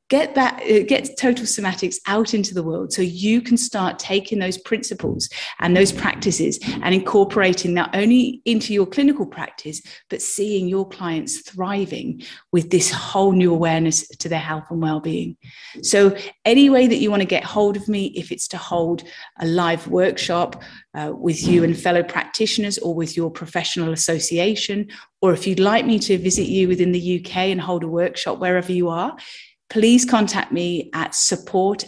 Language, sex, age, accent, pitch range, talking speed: English, female, 30-49, British, 170-215 Hz, 180 wpm